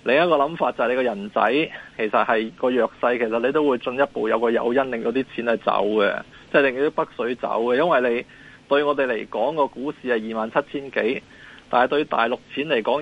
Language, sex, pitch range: Chinese, male, 120-150 Hz